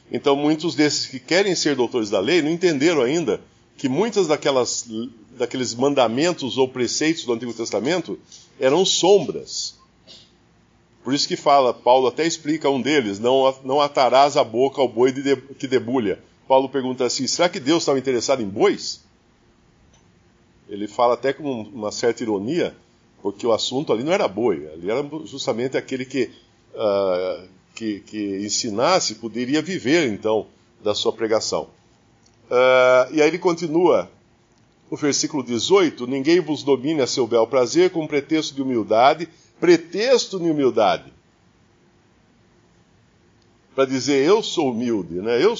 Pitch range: 120-165 Hz